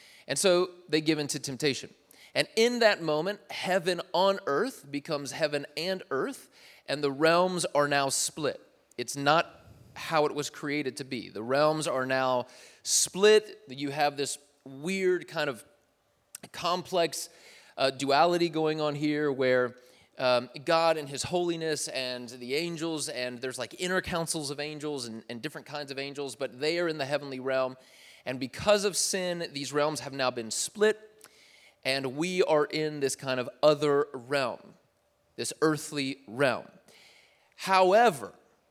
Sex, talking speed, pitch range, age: male, 155 wpm, 135-170 Hz, 30-49